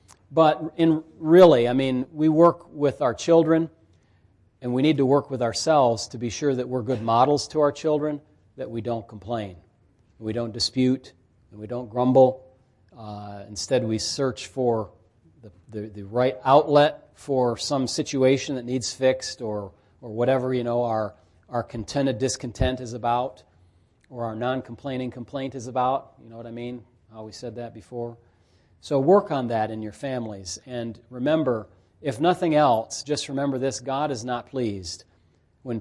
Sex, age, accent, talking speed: male, 40-59, American, 170 wpm